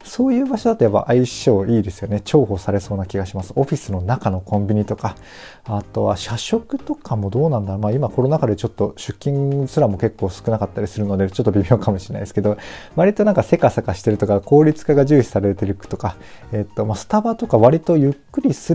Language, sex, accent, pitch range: Japanese, male, native, 100-130 Hz